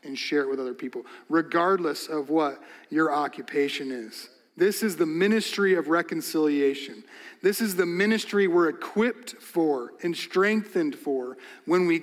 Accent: American